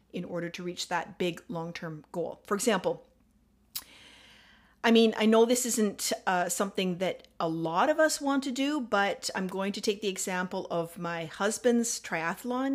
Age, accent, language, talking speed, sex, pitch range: 40-59, American, English, 175 wpm, female, 175-225 Hz